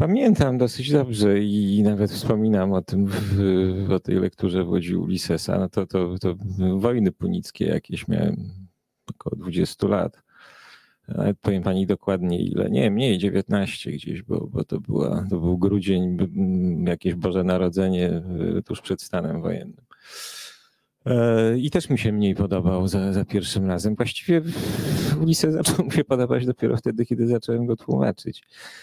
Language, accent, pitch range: Polish, native, 95-115 Hz